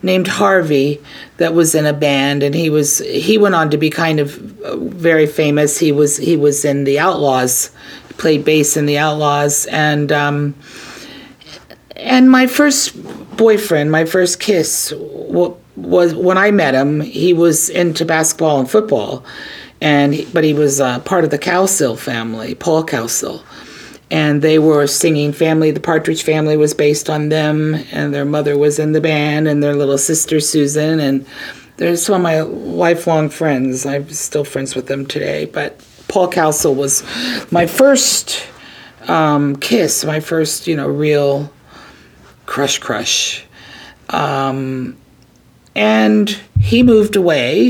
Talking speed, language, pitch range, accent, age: 150 wpm, English, 145-175 Hz, American, 40-59